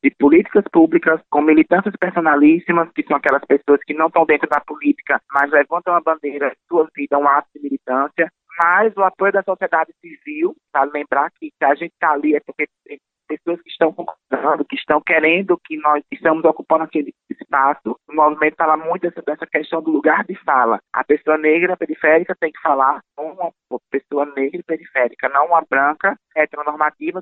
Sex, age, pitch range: male, 20-39, 145-170 Hz